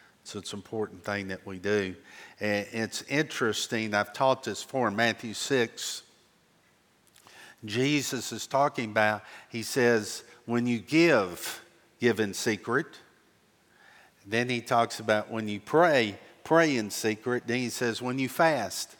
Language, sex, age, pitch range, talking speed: English, male, 50-69, 105-135 Hz, 140 wpm